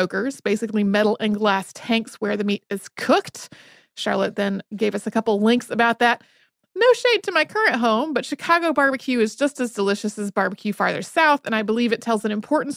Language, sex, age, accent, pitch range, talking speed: English, female, 30-49, American, 215-285 Hz, 200 wpm